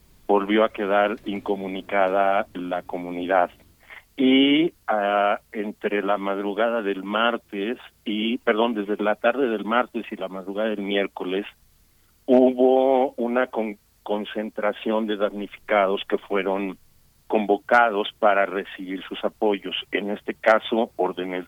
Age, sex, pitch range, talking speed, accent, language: 50-69, male, 95-110 Hz, 110 wpm, Mexican, Spanish